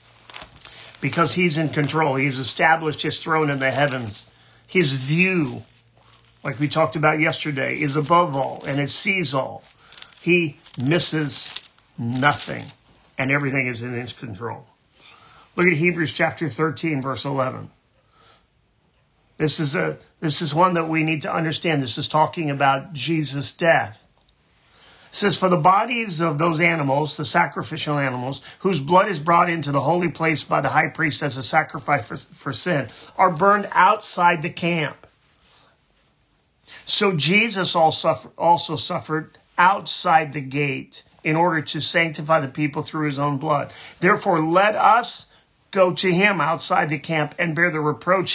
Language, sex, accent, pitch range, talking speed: English, male, American, 140-170 Hz, 150 wpm